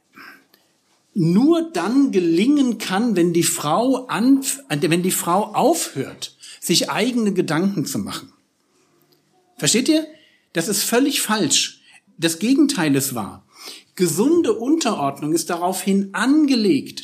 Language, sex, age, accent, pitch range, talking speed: German, male, 60-79, German, 175-245 Hz, 115 wpm